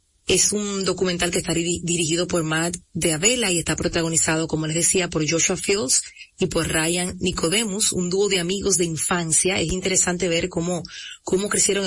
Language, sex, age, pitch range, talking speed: Spanish, female, 30-49, 165-190 Hz, 175 wpm